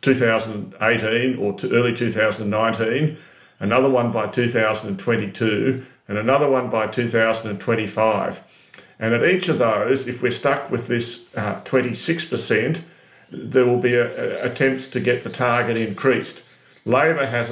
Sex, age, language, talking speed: male, 50-69, English, 125 wpm